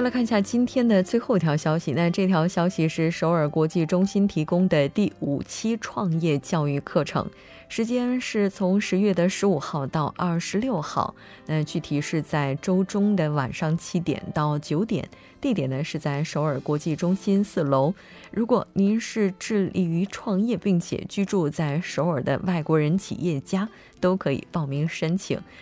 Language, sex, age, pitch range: Korean, female, 20-39, 155-200 Hz